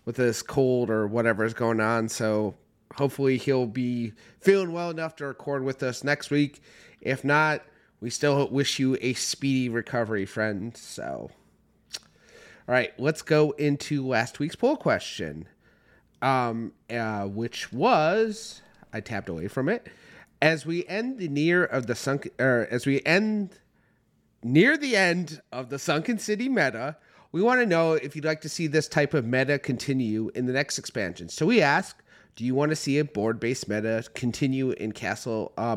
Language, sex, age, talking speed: English, male, 30-49, 175 wpm